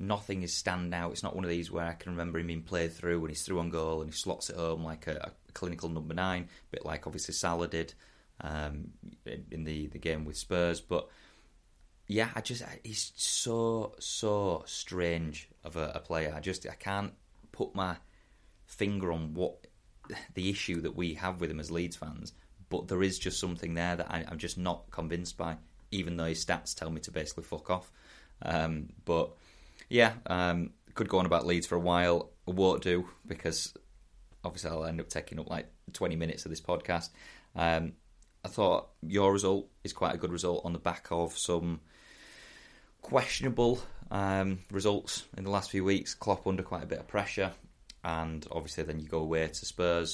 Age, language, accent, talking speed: 30-49, English, British, 200 wpm